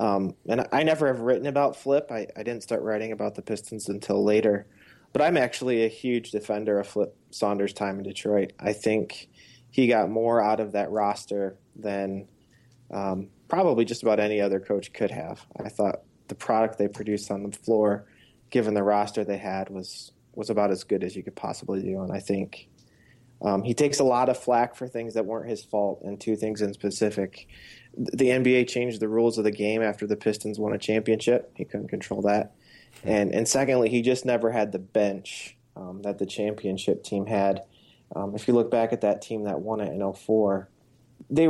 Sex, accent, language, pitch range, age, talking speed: male, American, English, 100-115 Hz, 20-39, 205 wpm